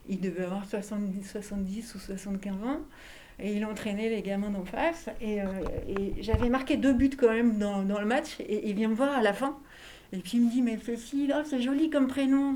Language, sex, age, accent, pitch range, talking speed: French, female, 60-79, French, 200-265 Hz, 230 wpm